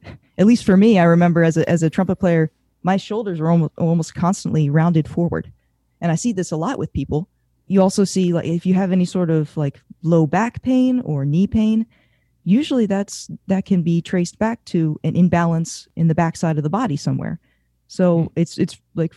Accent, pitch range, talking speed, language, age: American, 160-195 Hz, 205 wpm, English, 20-39